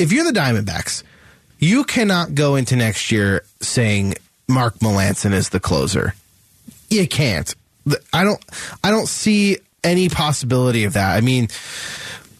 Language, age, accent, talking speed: English, 30-49, American, 140 wpm